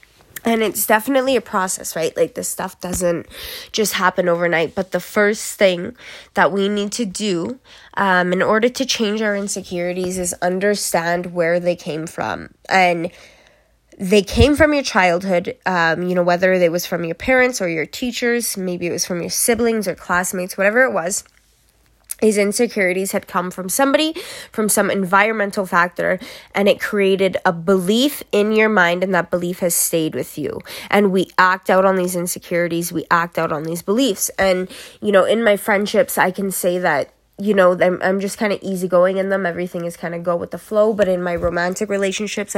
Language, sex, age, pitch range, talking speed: English, female, 20-39, 175-210 Hz, 190 wpm